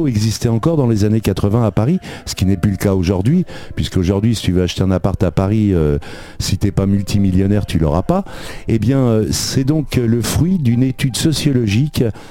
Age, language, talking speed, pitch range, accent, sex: 50-69, French, 210 wpm, 95-120 Hz, French, male